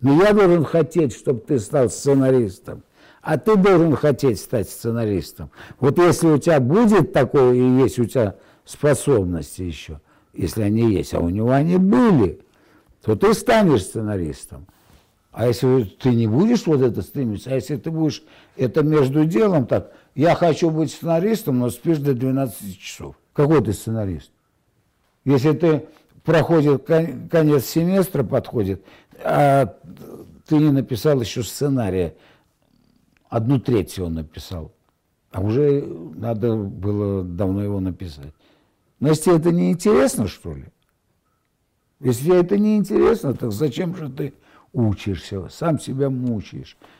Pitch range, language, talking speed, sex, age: 100-155 Hz, Russian, 140 wpm, male, 60-79